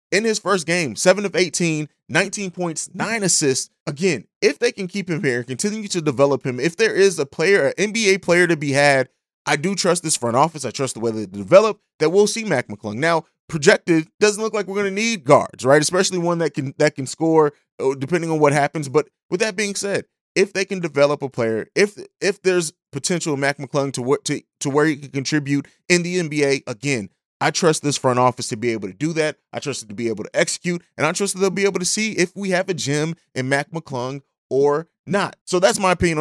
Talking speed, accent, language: 235 wpm, American, English